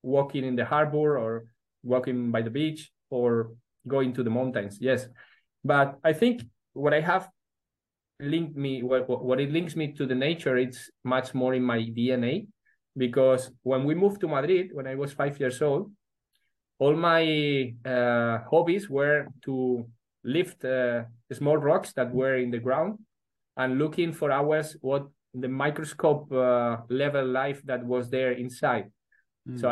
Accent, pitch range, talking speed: Spanish, 120-140 Hz, 160 wpm